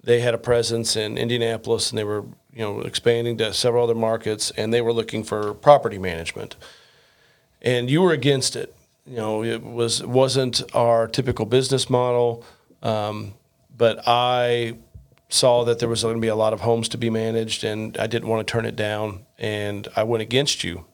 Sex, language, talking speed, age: male, English, 190 wpm, 40-59